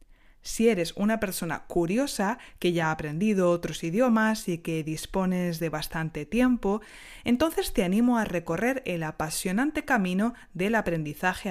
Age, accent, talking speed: 20-39, Spanish, 140 wpm